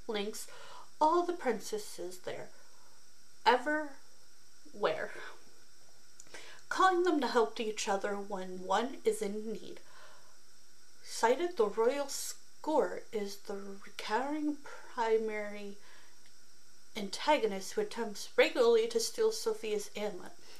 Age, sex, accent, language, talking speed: 30-49, female, American, English, 100 wpm